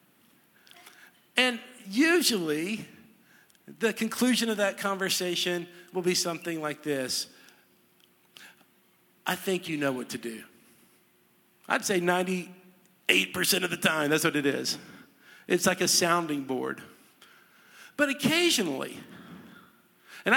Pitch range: 155-200 Hz